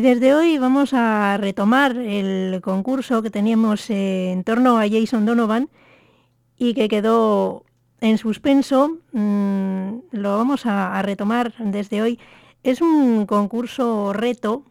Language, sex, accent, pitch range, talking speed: English, female, Spanish, 195-245 Hz, 135 wpm